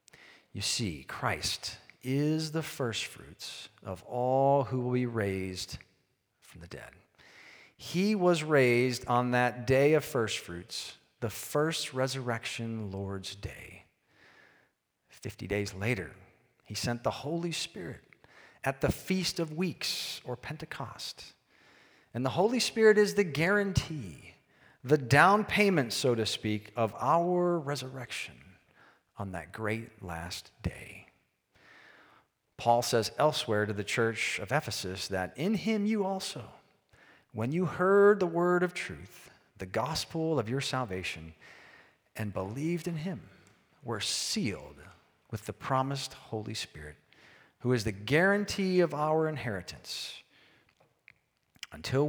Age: 40-59